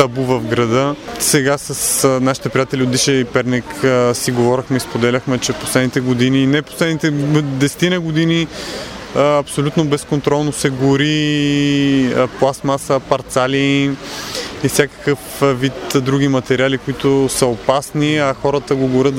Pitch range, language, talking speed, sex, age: 130-145 Hz, Bulgarian, 120 wpm, male, 20-39